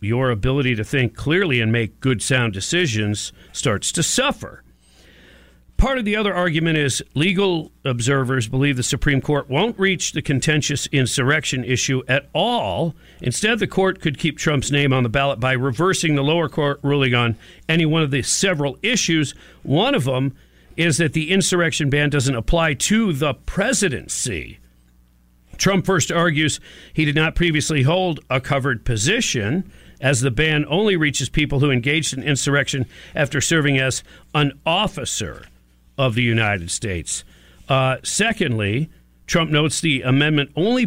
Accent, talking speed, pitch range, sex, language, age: American, 155 wpm, 120-160 Hz, male, English, 50-69